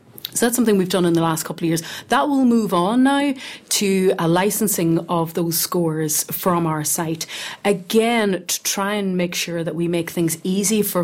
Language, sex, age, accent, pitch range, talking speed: English, female, 30-49, Irish, 165-195 Hz, 200 wpm